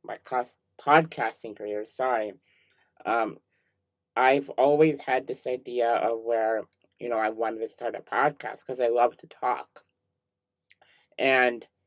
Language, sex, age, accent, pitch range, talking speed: English, male, 20-39, American, 110-130 Hz, 135 wpm